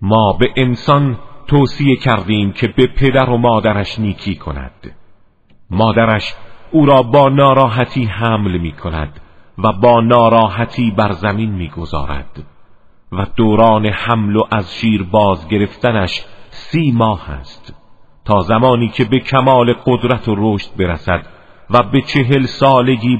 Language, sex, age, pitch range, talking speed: Arabic, male, 50-69, 95-125 Hz, 130 wpm